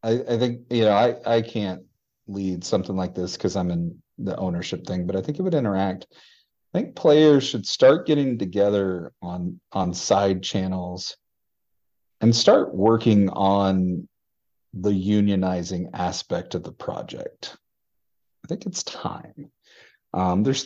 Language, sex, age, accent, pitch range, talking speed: English, male, 40-59, American, 95-135 Hz, 150 wpm